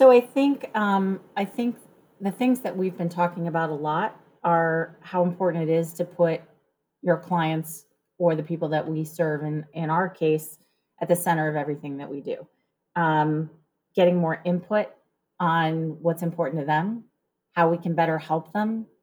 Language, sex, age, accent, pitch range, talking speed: English, female, 30-49, American, 155-175 Hz, 180 wpm